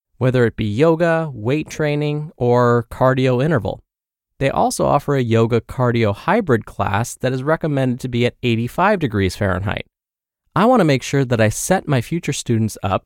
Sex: male